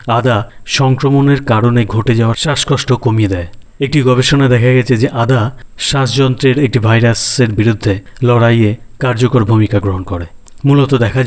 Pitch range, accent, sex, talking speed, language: 105-130 Hz, native, male, 135 wpm, Bengali